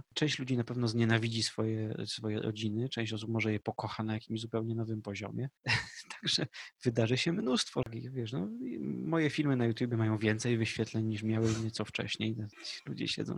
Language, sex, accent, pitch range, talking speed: Polish, male, native, 115-140 Hz, 170 wpm